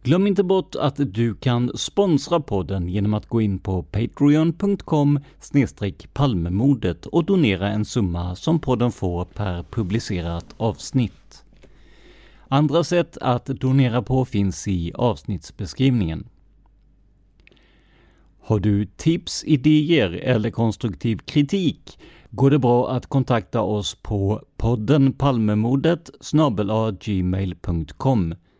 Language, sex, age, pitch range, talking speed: Swedish, male, 50-69, 95-145 Hz, 100 wpm